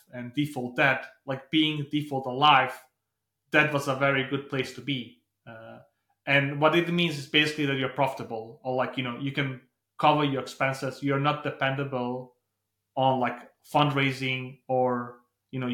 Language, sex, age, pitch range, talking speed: English, male, 30-49, 125-150 Hz, 165 wpm